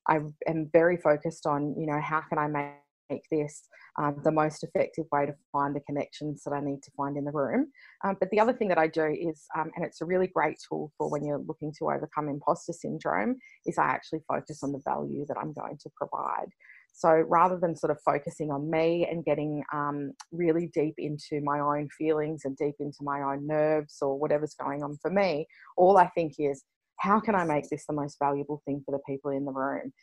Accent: Australian